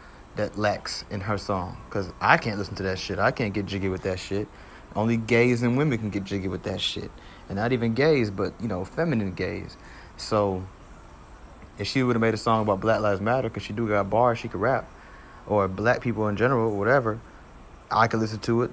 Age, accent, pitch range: 30-49, American, 95-115 Hz